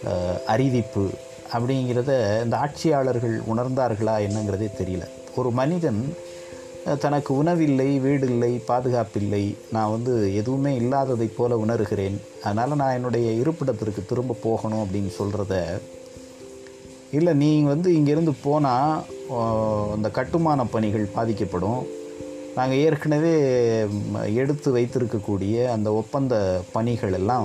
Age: 30-49